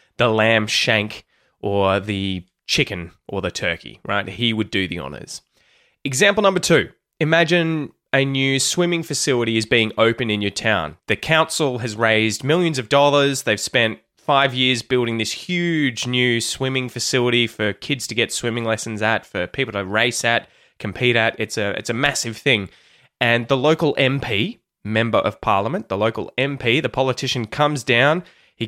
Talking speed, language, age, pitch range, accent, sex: 165 wpm, English, 20-39, 110-145 Hz, Australian, male